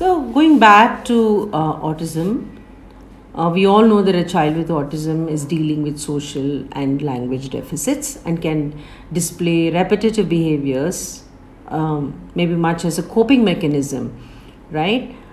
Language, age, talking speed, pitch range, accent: English, 50-69, 135 wpm, 155-220 Hz, Indian